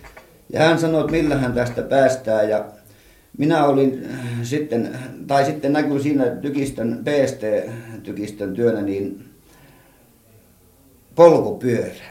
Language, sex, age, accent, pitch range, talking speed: Finnish, male, 50-69, native, 110-145 Hz, 95 wpm